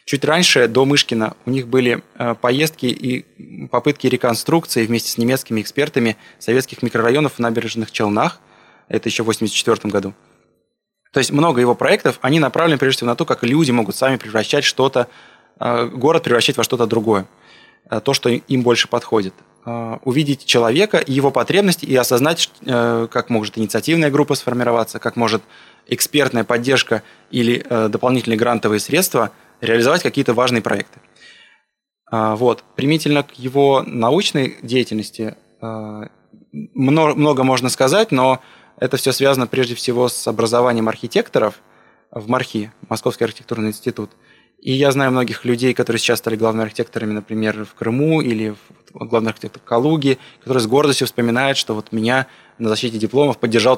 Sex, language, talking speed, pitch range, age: male, Russian, 140 wpm, 110-130 Hz, 20-39